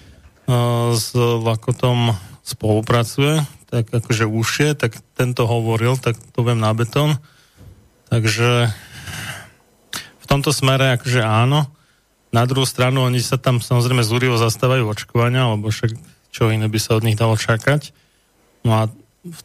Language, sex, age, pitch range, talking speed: Slovak, male, 20-39, 115-130 Hz, 140 wpm